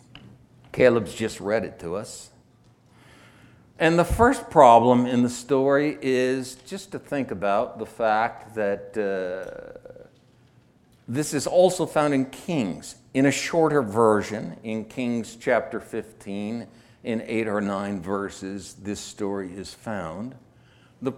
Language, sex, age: English, male, 60-79